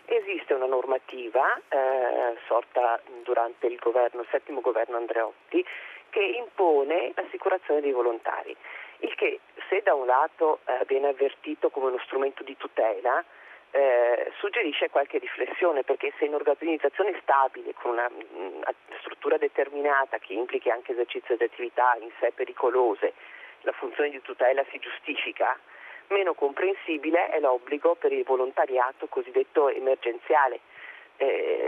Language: Italian